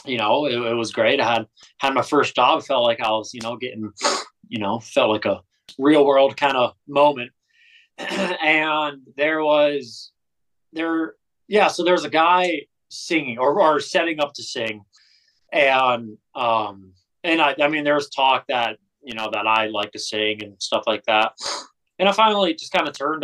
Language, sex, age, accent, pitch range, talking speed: English, male, 20-39, American, 110-145 Hz, 190 wpm